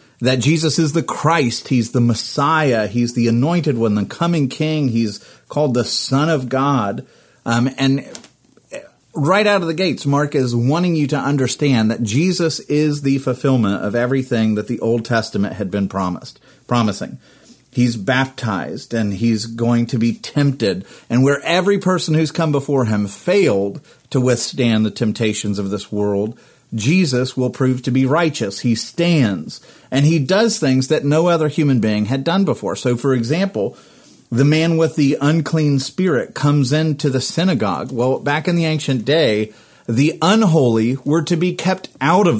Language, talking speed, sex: English, 170 wpm, male